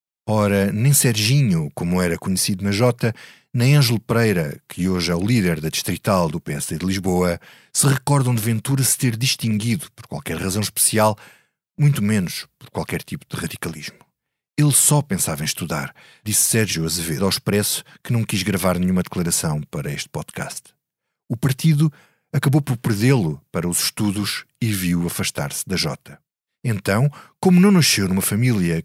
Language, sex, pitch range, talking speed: Portuguese, male, 90-135 Hz, 160 wpm